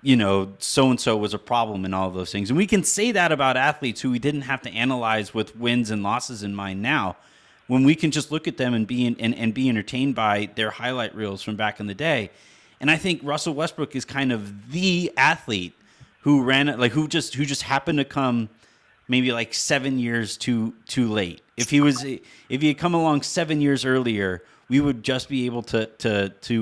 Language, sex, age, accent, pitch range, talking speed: English, male, 30-49, American, 115-155 Hz, 230 wpm